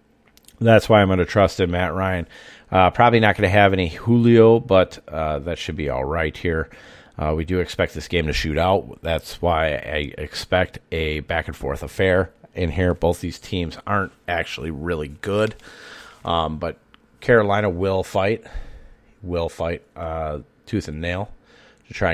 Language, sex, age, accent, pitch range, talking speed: English, male, 40-59, American, 75-95 Hz, 170 wpm